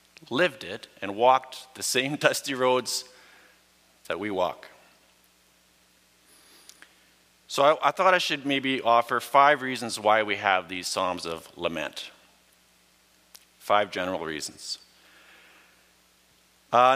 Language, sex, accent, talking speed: English, male, American, 115 wpm